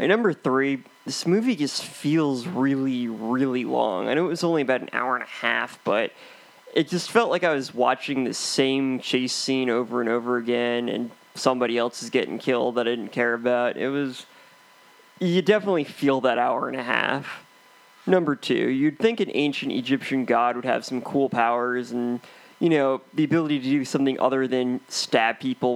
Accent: American